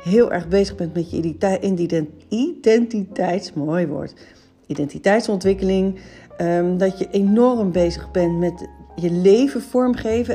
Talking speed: 110 wpm